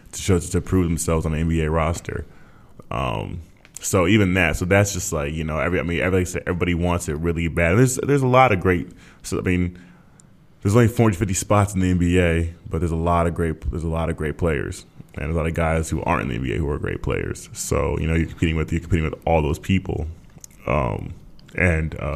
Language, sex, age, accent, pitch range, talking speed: German, male, 20-39, American, 80-95 Hz, 235 wpm